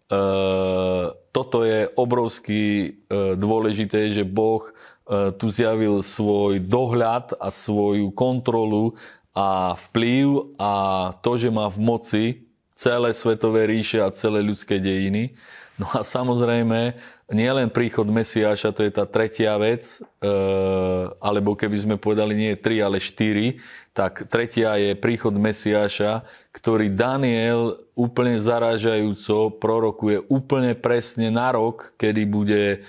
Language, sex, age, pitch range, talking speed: Slovak, male, 30-49, 105-115 Hz, 120 wpm